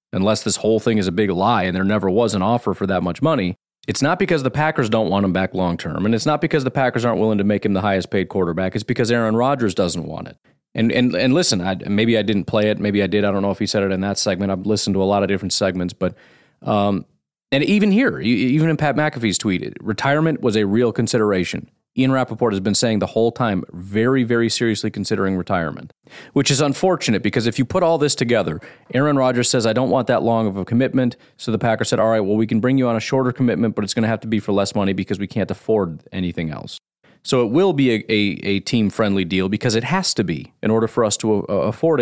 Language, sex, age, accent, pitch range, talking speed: English, male, 30-49, American, 100-120 Hz, 255 wpm